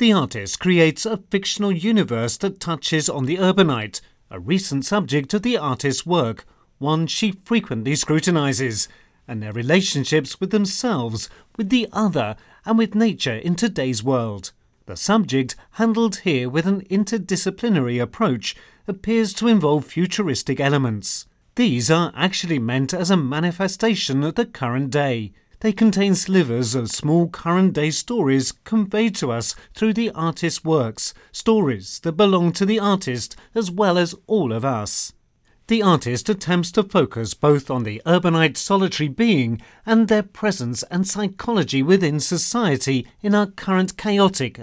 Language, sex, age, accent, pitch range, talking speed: Turkish, male, 40-59, British, 135-205 Hz, 145 wpm